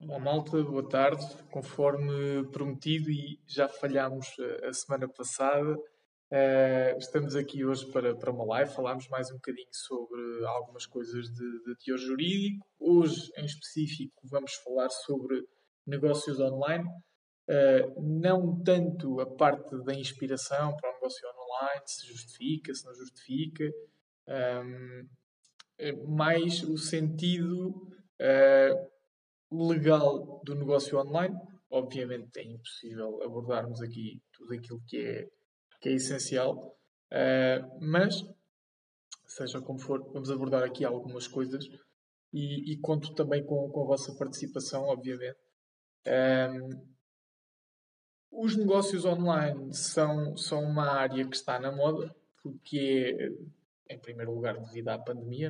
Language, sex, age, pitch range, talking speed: Portuguese, male, 20-39, 130-155 Hz, 120 wpm